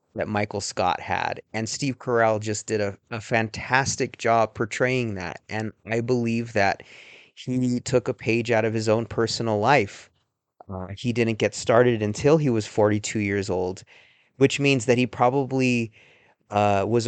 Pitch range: 105-130 Hz